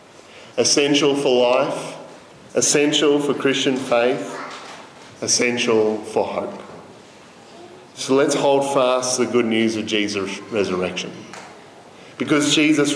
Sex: male